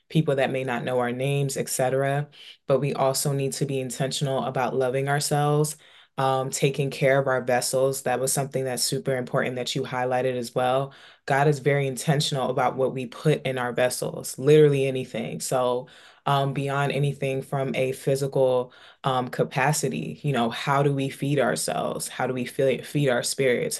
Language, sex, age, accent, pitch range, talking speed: English, female, 20-39, American, 130-145 Hz, 180 wpm